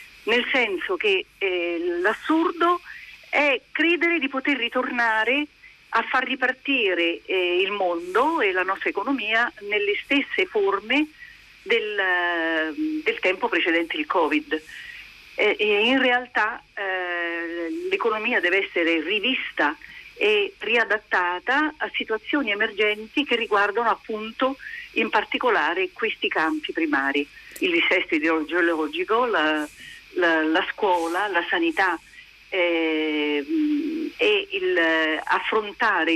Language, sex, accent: Italian, female, native